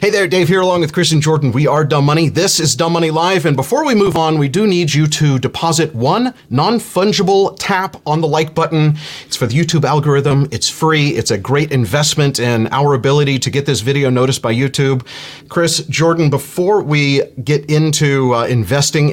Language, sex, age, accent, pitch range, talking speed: English, male, 30-49, American, 120-155 Hz, 205 wpm